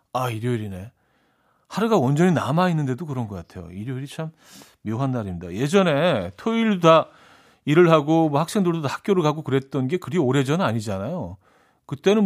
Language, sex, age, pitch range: Korean, male, 40-59, 120-170 Hz